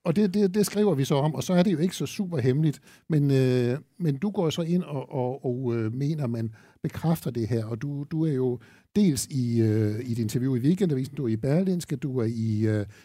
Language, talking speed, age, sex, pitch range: Danish, 255 wpm, 60-79, male, 125-160 Hz